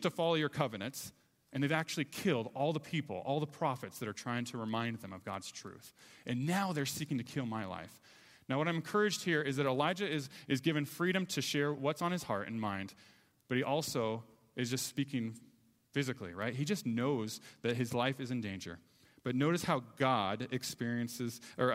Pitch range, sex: 120-180 Hz, male